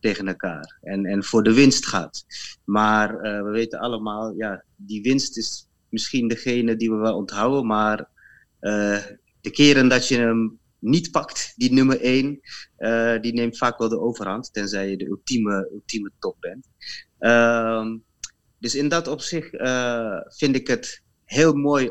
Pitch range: 105-125 Hz